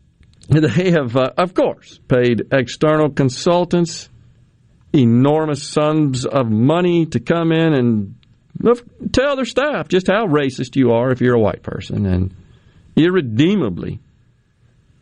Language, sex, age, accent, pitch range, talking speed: English, male, 50-69, American, 115-150 Hz, 125 wpm